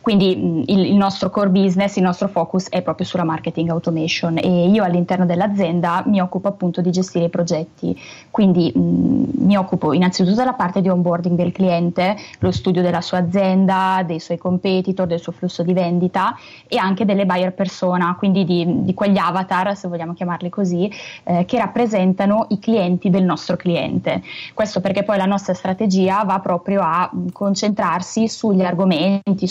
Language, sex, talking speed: Italian, female, 165 wpm